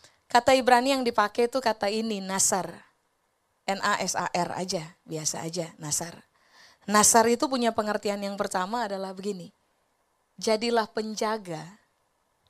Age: 20-39